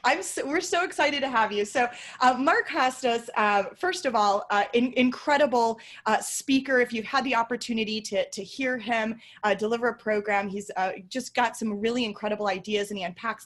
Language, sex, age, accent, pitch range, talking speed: English, female, 20-39, American, 205-240 Hz, 185 wpm